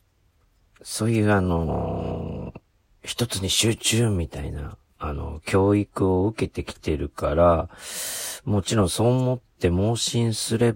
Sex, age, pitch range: male, 40-59, 80-95 Hz